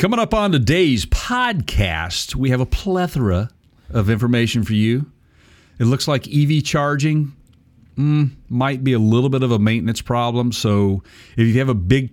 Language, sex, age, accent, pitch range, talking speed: English, male, 50-69, American, 110-150 Hz, 170 wpm